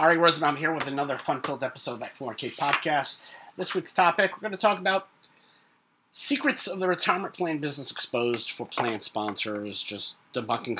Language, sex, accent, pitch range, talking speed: English, male, American, 115-150 Hz, 180 wpm